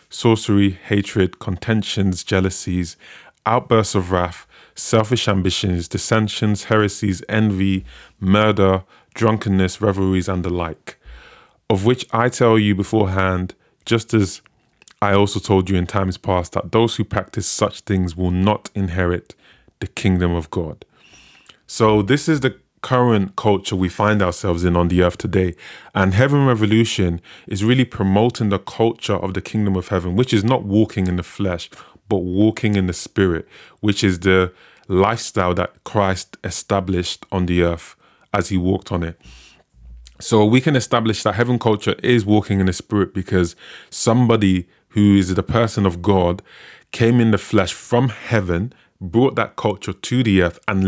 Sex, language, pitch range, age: male, English, 95-110 Hz, 20-39